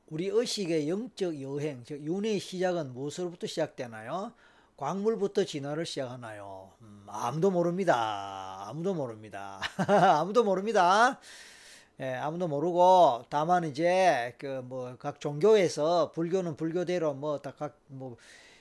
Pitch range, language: 135-185 Hz, Korean